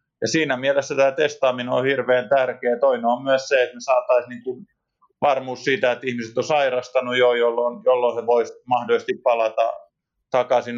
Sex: male